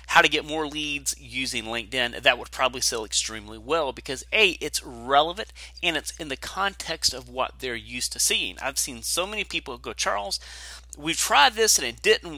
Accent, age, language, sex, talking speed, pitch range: American, 30-49, English, male, 200 wpm, 110-160 Hz